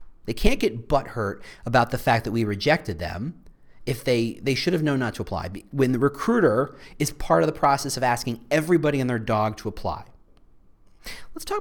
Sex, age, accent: male, 40-59, American